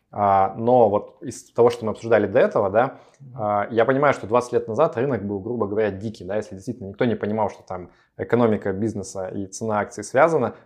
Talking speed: 195 wpm